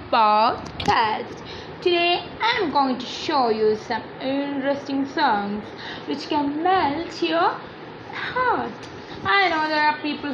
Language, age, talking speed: English, 20-39, 120 wpm